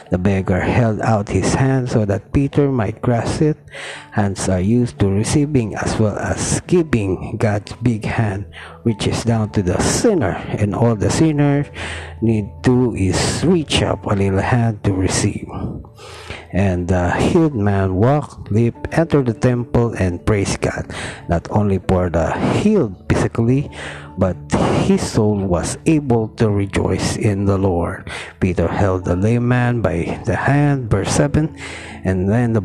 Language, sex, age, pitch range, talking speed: Filipino, male, 50-69, 95-130 Hz, 155 wpm